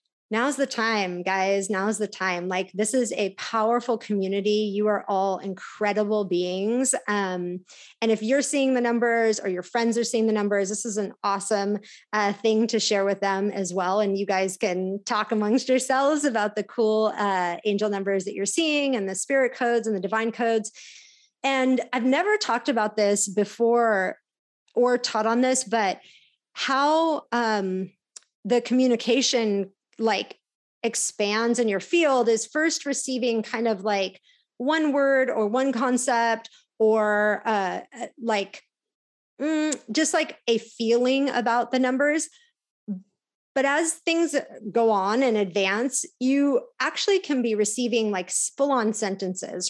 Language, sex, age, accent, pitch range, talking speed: English, female, 30-49, American, 200-250 Hz, 150 wpm